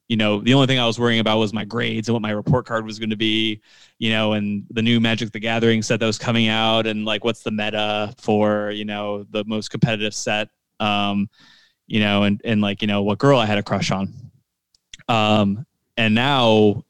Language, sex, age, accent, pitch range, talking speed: English, male, 20-39, American, 105-125 Hz, 225 wpm